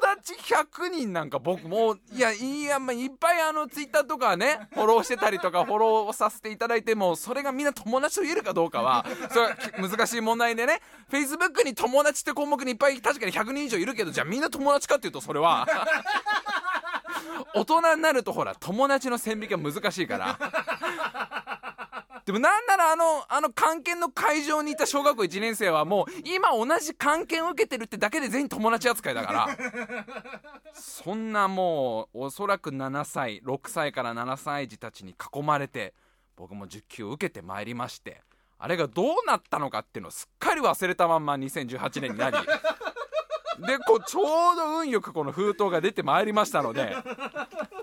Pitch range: 195-305 Hz